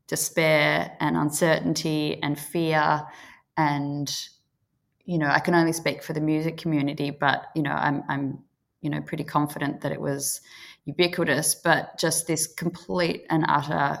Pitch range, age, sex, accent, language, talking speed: 145-165 Hz, 20-39, female, Australian, English, 150 wpm